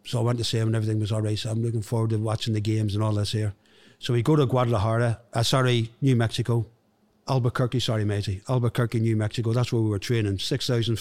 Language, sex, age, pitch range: English, male, 50-69, 110-125 Hz